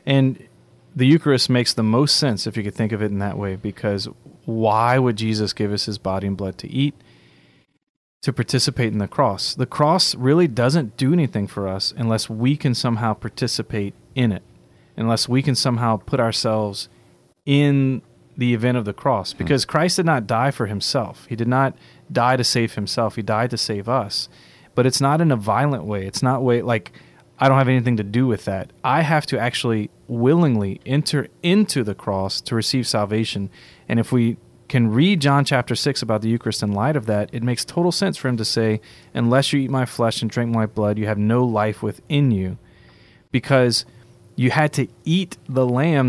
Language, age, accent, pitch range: English, 30-49, American, 110-135 Hz